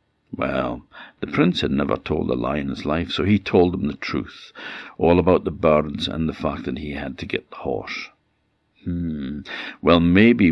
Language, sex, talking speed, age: English, male, 185 wpm, 60-79